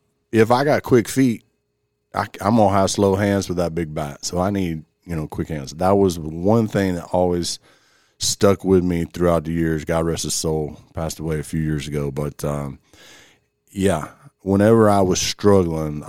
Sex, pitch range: male, 75-95 Hz